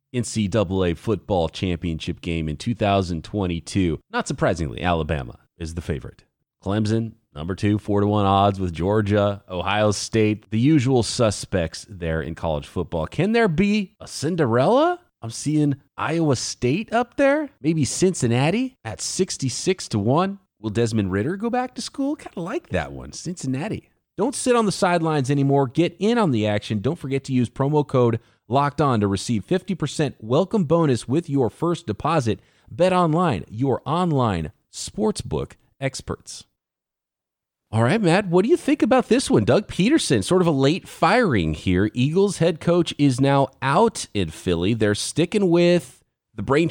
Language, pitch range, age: English, 100-170 Hz, 30-49